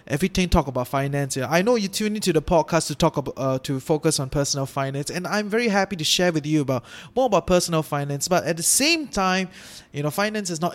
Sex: male